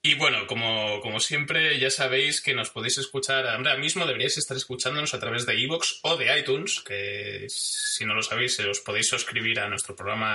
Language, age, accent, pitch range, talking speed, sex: Spanish, 20-39, Spanish, 105-135 Hz, 195 wpm, male